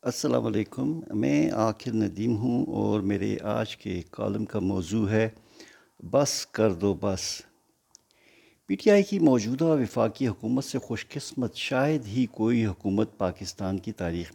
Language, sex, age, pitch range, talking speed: Urdu, male, 60-79, 100-120 Hz, 145 wpm